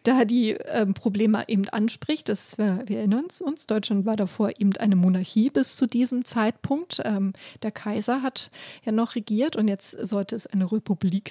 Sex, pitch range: female, 210-245 Hz